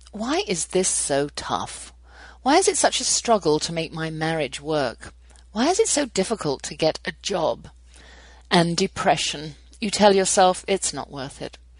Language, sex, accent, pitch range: English, female, British, 145-190 Hz